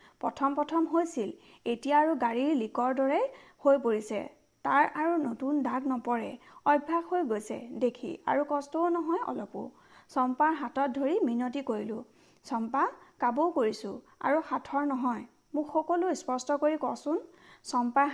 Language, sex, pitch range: Hindi, female, 250-310 Hz